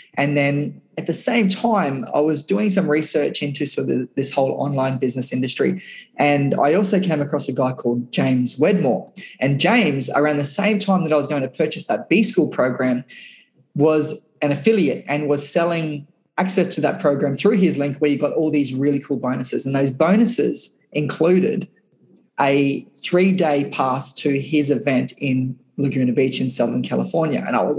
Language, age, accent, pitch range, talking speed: English, 20-39, Australian, 140-180 Hz, 180 wpm